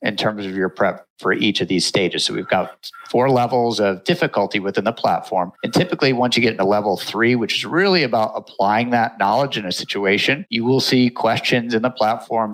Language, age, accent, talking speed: English, 50-69, American, 215 wpm